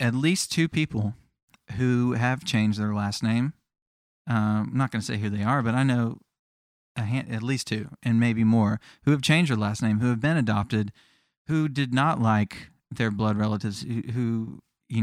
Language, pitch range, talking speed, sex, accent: English, 105-130 Hz, 200 wpm, male, American